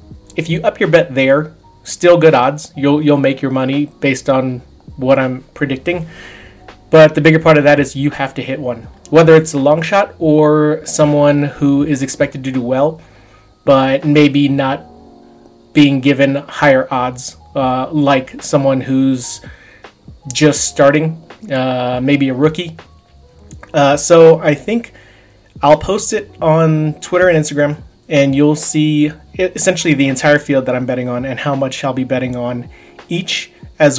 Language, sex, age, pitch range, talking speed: English, male, 30-49, 130-155 Hz, 160 wpm